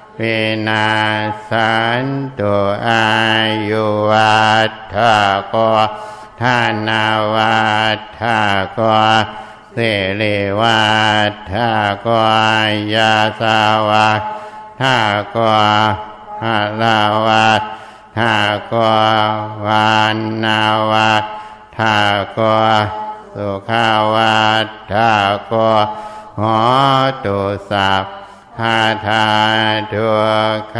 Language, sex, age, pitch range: Thai, male, 60-79, 105-110 Hz